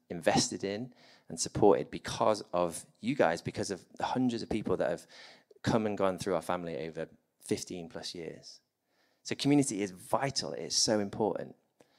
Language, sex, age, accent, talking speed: English, male, 30-49, British, 165 wpm